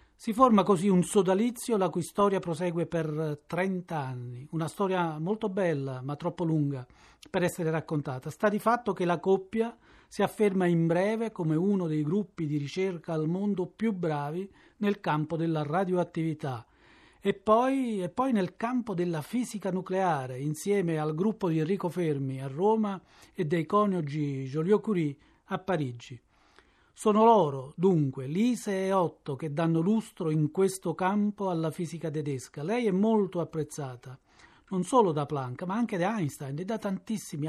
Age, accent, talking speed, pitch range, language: 40-59, native, 155 wpm, 155-200 Hz, Italian